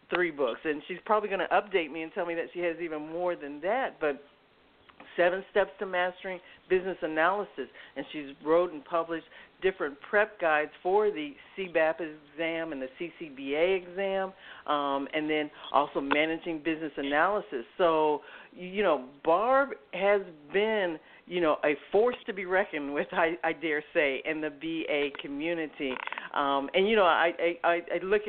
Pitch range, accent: 150-190 Hz, American